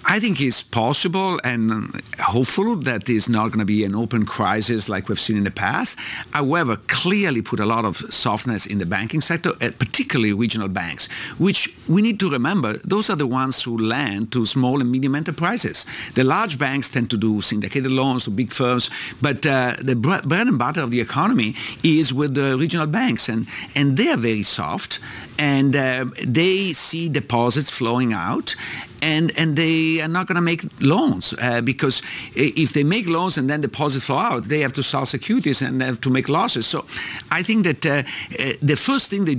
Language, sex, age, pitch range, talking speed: English, male, 50-69, 115-155 Hz, 200 wpm